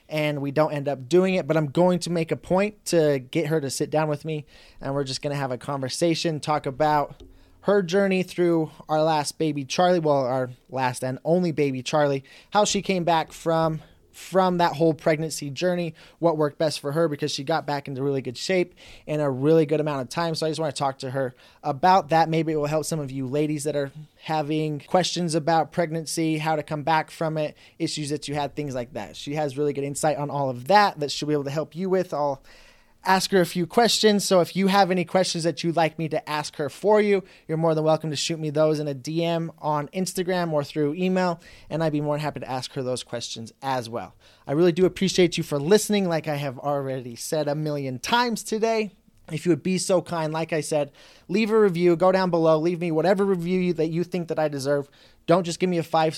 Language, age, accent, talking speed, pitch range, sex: English, 20-39, American, 240 wpm, 145-175 Hz, male